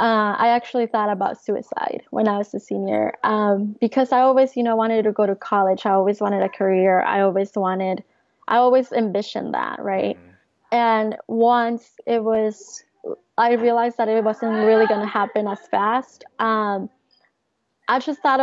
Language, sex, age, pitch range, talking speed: English, female, 20-39, 205-235 Hz, 175 wpm